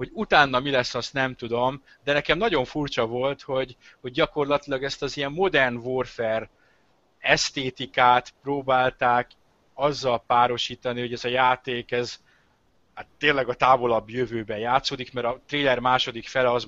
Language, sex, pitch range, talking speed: Hungarian, male, 120-140 Hz, 150 wpm